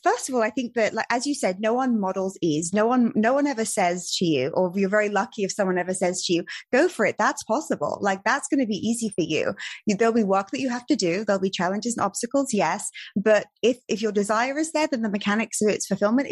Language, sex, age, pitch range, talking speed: English, female, 20-39, 190-240 Hz, 265 wpm